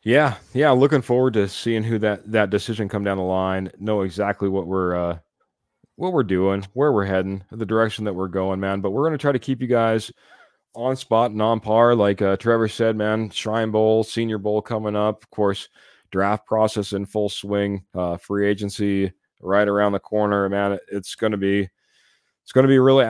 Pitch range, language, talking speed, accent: 100-115 Hz, English, 210 wpm, American